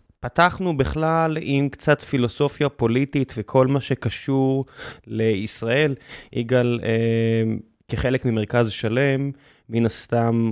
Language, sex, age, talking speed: Hebrew, male, 20-39, 95 wpm